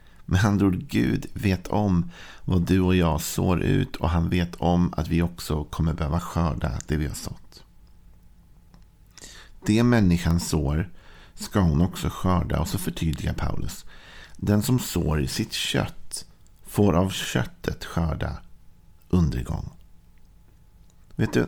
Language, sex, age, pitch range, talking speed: Swedish, male, 50-69, 85-95 Hz, 140 wpm